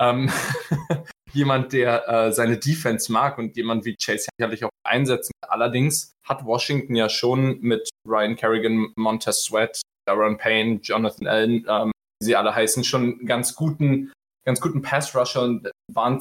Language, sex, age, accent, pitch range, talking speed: German, male, 20-39, German, 110-130 Hz, 150 wpm